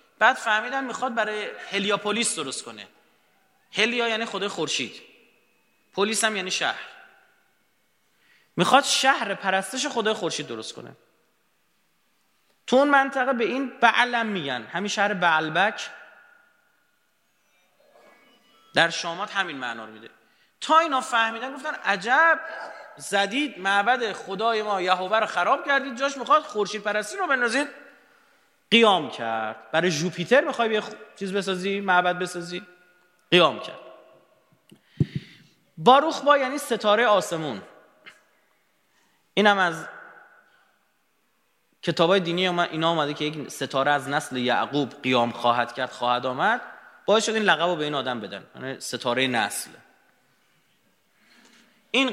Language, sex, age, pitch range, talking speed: Persian, male, 30-49, 165-255 Hz, 115 wpm